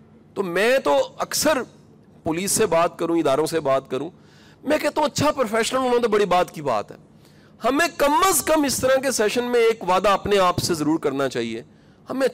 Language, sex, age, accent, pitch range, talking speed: English, male, 40-59, Indian, 175-255 Hz, 205 wpm